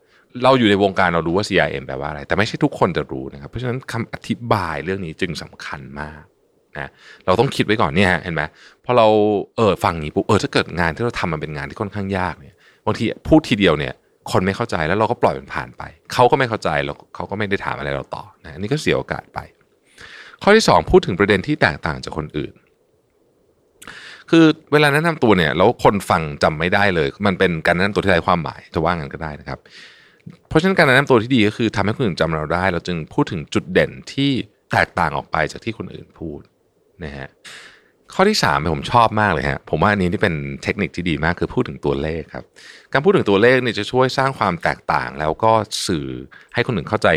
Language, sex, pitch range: Thai, male, 80-120 Hz